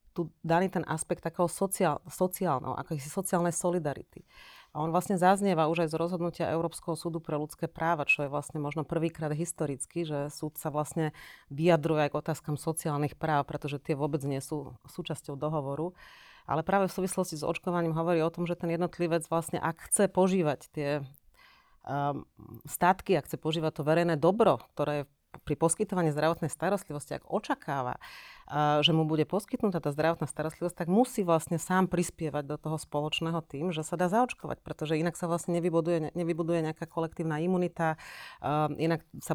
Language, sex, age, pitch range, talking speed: Slovak, female, 30-49, 150-170 Hz, 170 wpm